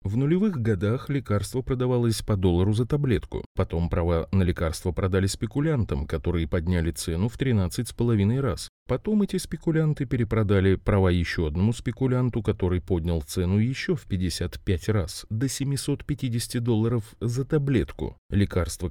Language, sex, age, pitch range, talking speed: Russian, male, 30-49, 90-120 Hz, 135 wpm